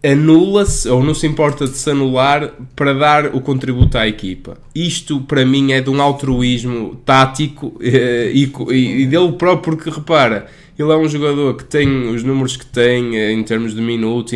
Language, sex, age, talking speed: Portuguese, male, 20-39, 180 wpm